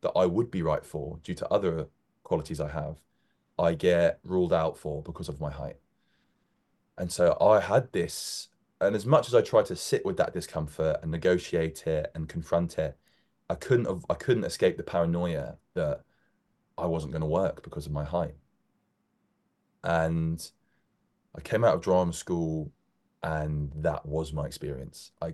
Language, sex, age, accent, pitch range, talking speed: English, male, 20-39, British, 75-85 Hz, 175 wpm